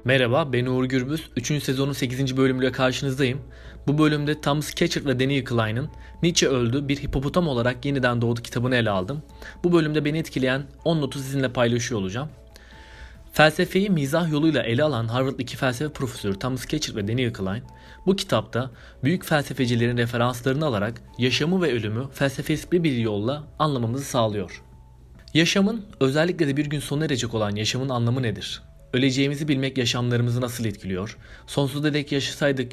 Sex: male